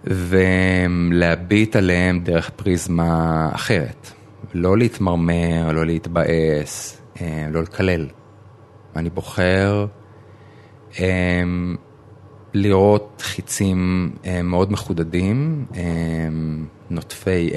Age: 30-49